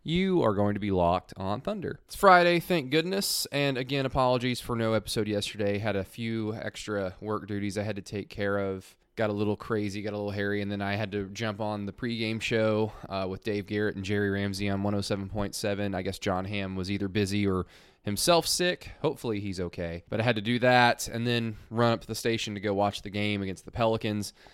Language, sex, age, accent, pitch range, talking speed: English, male, 20-39, American, 100-115 Hz, 225 wpm